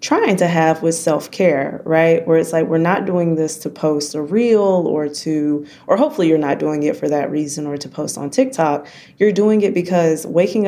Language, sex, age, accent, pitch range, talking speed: English, female, 20-39, American, 145-180 Hz, 215 wpm